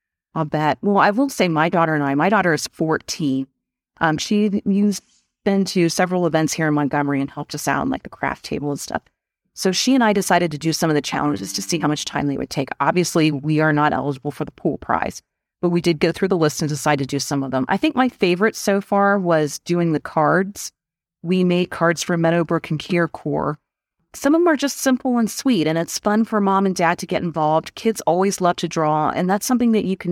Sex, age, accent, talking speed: female, 30-49, American, 245 wpm